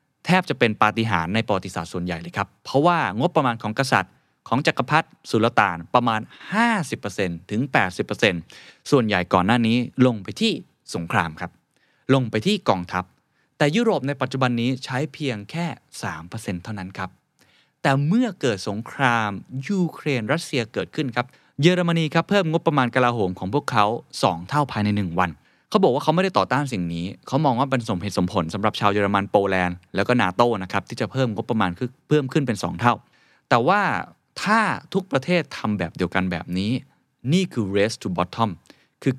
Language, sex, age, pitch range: Thai, male, 20-39, 100-145 Hz